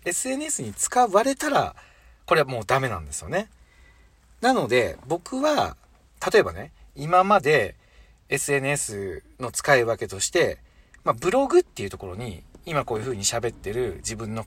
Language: Japanese